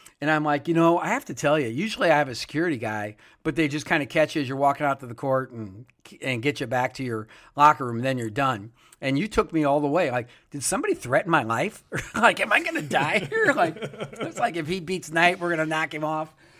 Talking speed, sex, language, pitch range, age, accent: 275 wpm, male, English, 130-155 Hz, 50-69, American